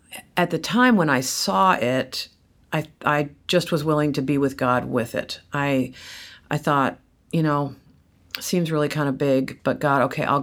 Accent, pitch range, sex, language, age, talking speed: American, 135-165 Hz, female, English, 50-69, 190 wpm